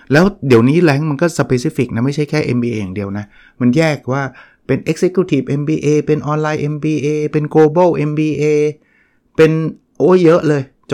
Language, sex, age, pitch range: Thai, male, 60-79, 120-150 Hz